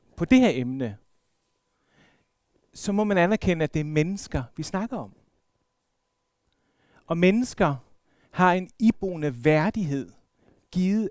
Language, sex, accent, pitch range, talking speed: Danish, male, native, 145-195 Hz, 120 wpm